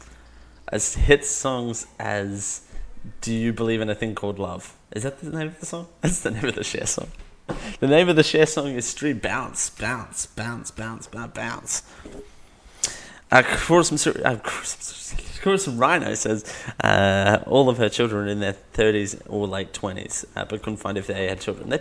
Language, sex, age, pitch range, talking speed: English, male, 20-39, 105-160 Hz, 185 wpm